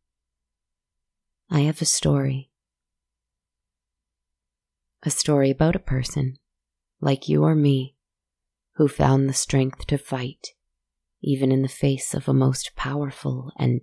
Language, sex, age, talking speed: English, female, 30-49, 120 wpm